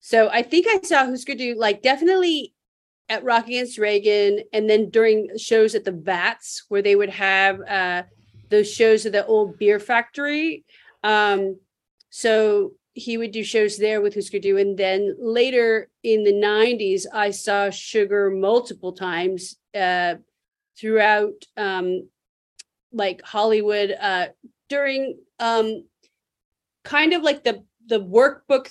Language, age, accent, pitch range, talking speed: English, 40-59, American, 195-240 Hz, 140 wpm